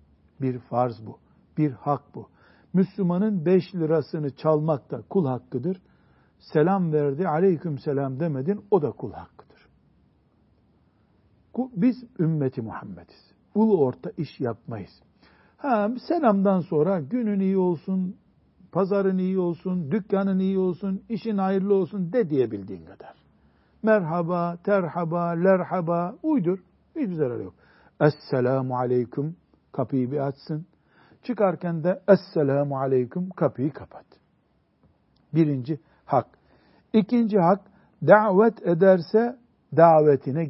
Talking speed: 110 wpm